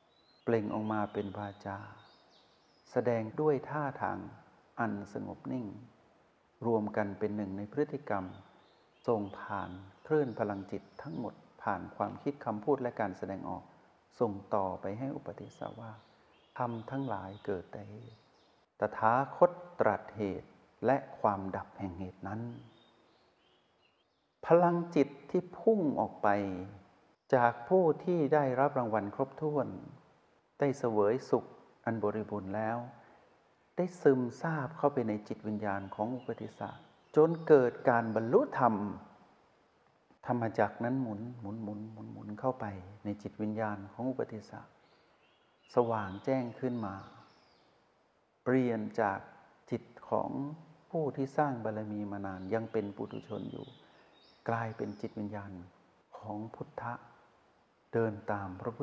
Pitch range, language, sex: 105-130 Hz, Thai, male